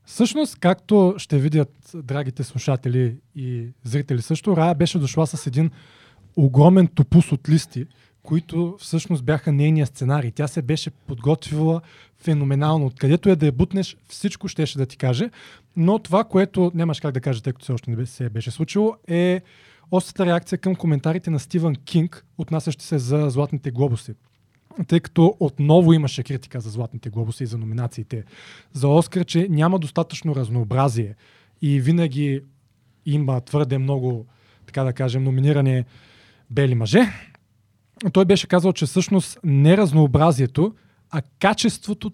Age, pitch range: 20-39, 130-170 Hz